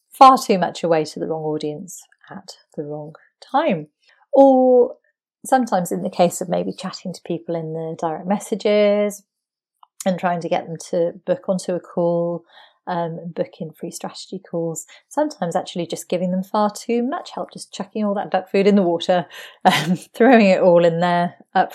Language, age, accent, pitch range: English, 30-49, British, 165-205 Hz